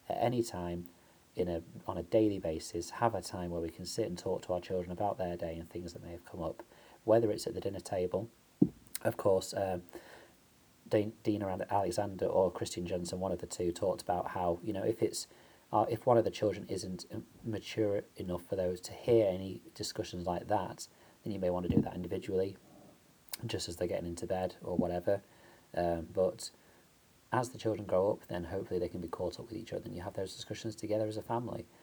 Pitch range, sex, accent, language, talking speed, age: 90-110 Hz, male, British, English, 210 wpm, 30-49